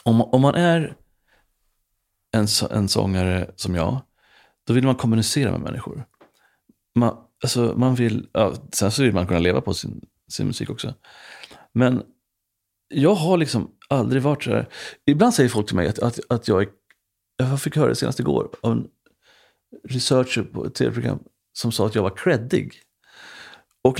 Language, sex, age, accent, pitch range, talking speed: English, male, 30-49, Swedish, 110-145 Hz, 165 wpm